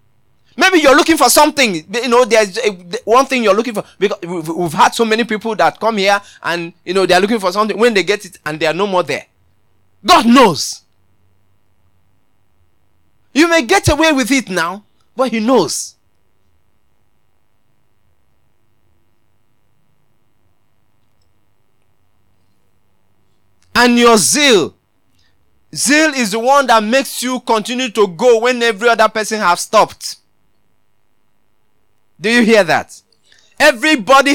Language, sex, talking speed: English, male, 135 wpm